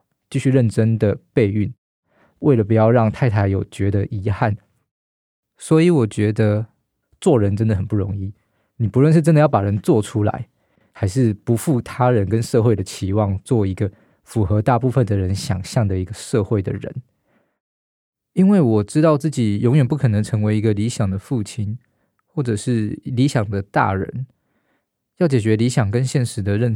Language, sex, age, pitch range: Chinese, male, 20-39, 105-125 Hz